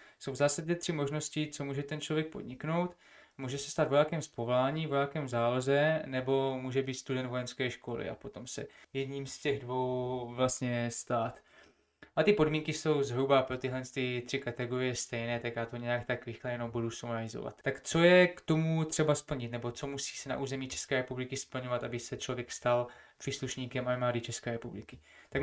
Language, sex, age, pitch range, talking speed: Czech, male, 20-39, 125-145 Hz, 185 wpm